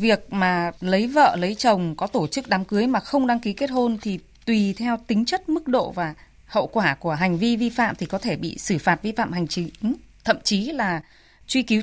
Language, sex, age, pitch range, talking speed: Vietnamese, female, 20-39, 175-235 Hz, 240 wpm